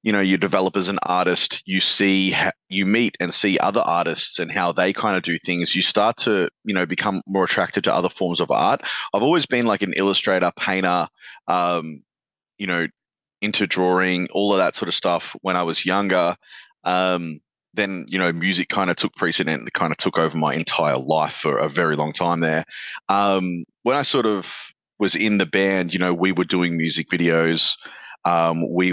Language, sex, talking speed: English, male, 205 wpm